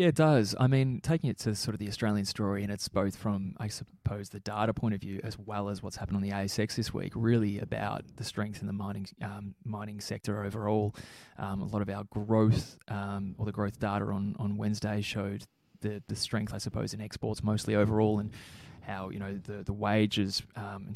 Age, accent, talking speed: 20-39, Australian, 225 wpm